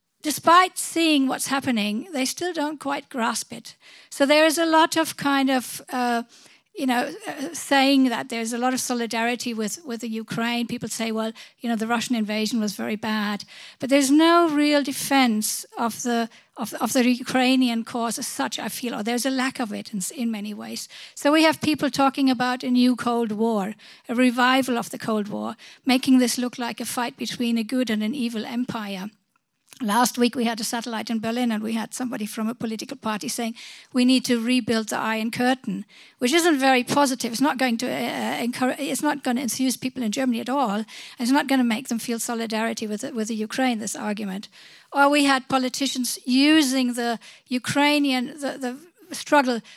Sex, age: female, 60-79